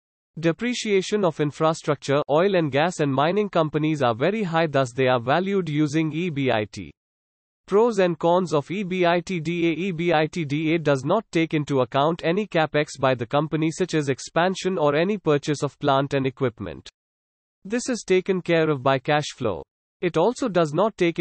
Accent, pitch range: Indian, 140-175 Hz